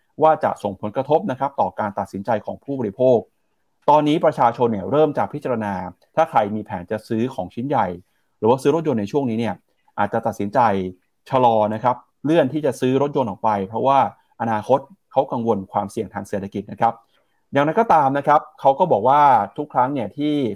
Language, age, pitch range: Thai, 30-49, 105-145 Hz